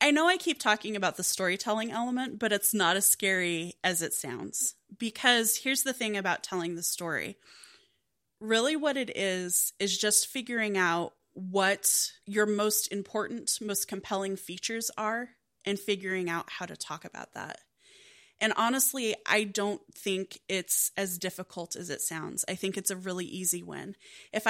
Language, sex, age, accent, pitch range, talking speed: English, female, 20-39, American, 175-215 Hz, 165 wpm